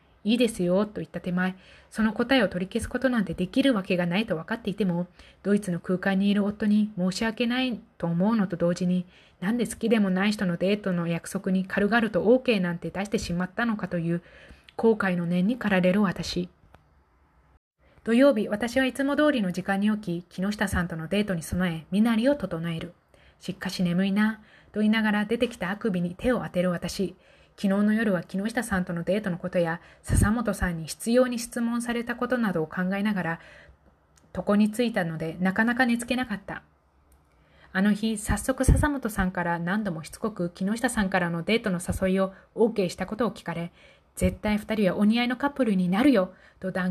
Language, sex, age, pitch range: Japanese, female, 20-39, 175-225 Hz